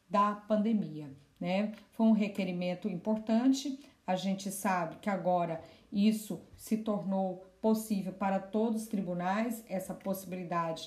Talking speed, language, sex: 120 wpm, Portuguese, female